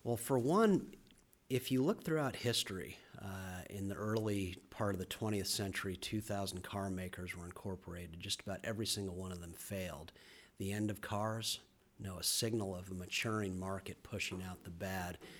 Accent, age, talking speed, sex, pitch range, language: American, 40-59, 175 wpm, male, 95-110 Hz, English